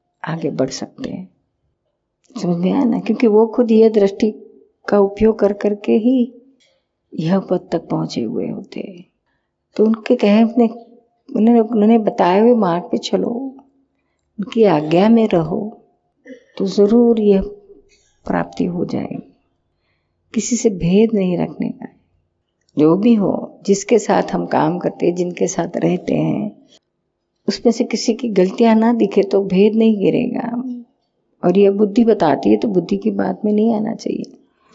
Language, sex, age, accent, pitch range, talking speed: Hindi, female, 50-69, native, 185-235 Hz, 150 wpm